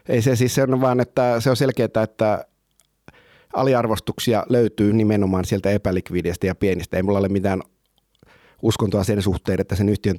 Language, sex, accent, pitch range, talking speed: Finnish, male, native, 95-110 Hz, 155 wpm